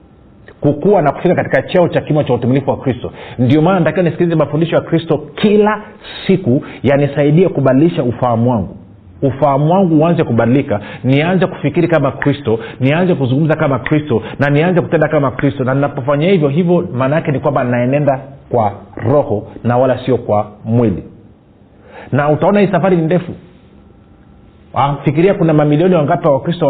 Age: 40-59